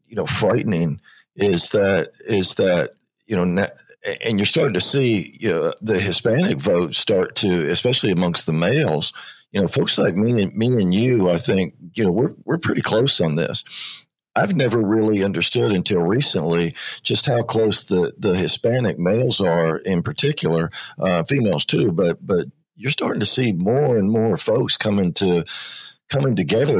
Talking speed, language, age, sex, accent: 170 wpm, English, 50-69, male, American